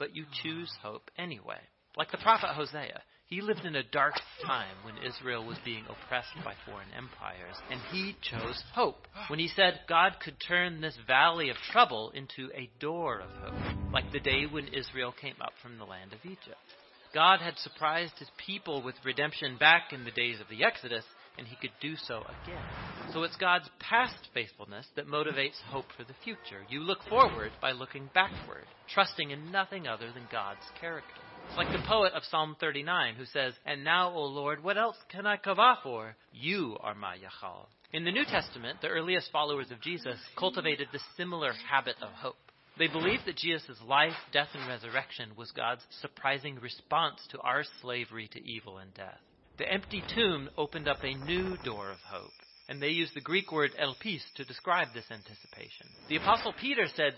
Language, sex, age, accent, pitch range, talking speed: English, male, 40-59, American, 130-175 Hz, 190 wpm